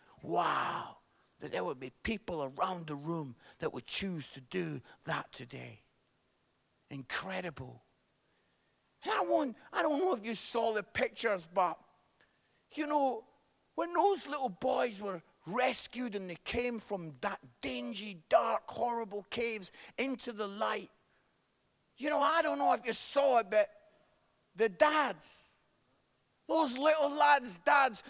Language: English